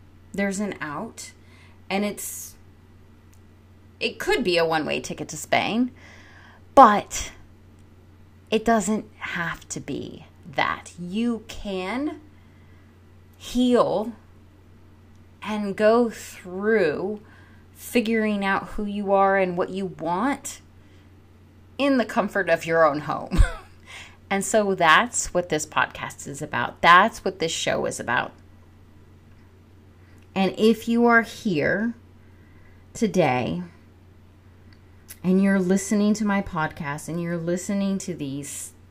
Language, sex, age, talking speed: English, female, 30-49, 115 wpm